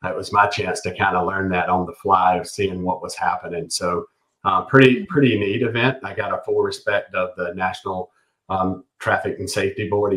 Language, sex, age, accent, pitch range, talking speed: English, male, 40-59, American, 95-115 Hz, 210 wpm